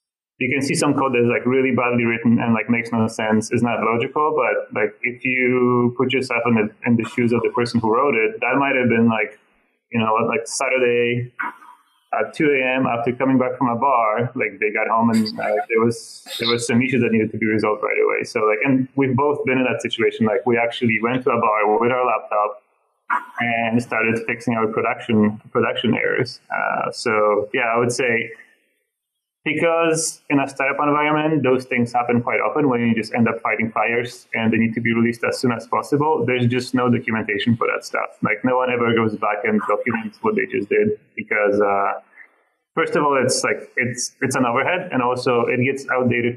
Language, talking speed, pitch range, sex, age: English, 210 wpm, 115-135 Hz, male, 20-39